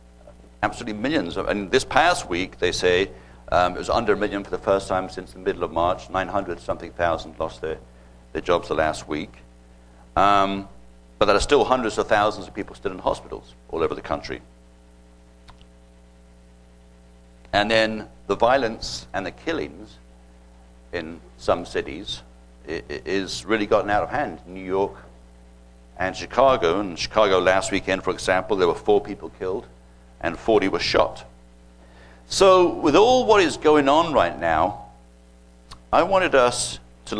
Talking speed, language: 155 wpm, English